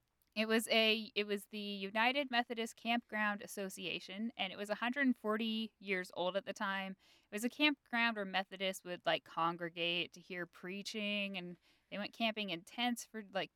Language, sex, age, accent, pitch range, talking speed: English, female, 10-29, American, 180-225 Hz, 175 wpm